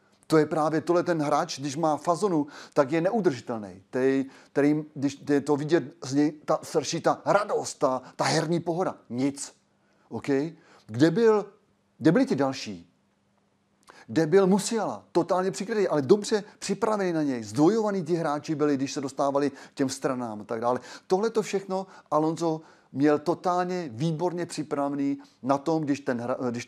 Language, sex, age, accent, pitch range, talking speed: Czech, male, 30-49, native, 130-160 Hz, 150 wpm